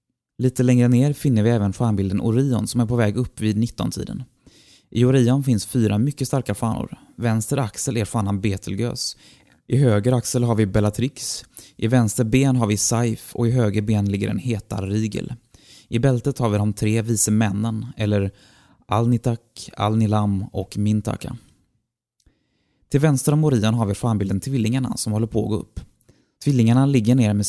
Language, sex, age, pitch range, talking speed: Swedish, male, 20-39, 105-125 Hz, 170 wpm